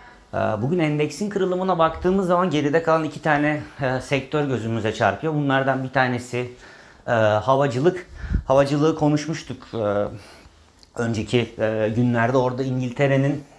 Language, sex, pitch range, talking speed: Turkish, male, 110-145 Hz, 95 wpm